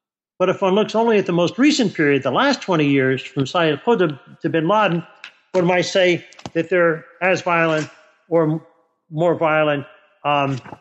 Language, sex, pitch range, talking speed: English, male, 150-190 Hz, 180 wpm